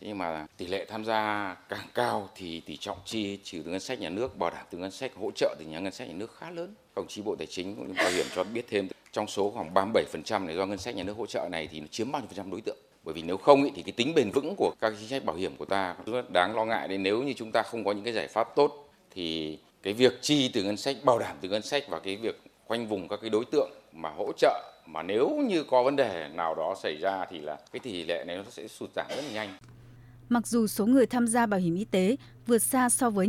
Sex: male